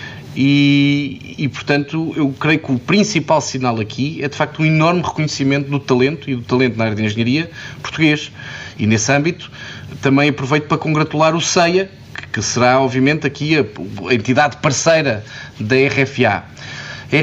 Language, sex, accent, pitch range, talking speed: Portuguese, male, Portuguese, 115-145 Hz, 165 wpm